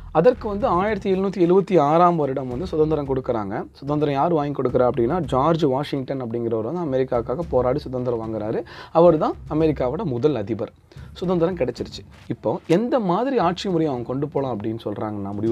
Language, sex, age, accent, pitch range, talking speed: Tamil, male, 30-49, native, 125-170 Hz, 135 wpm